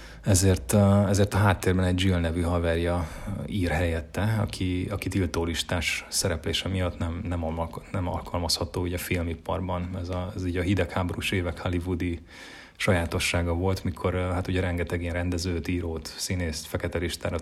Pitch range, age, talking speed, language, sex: 85-100 Hz, 30-49, 150 wpm, Hungarian, male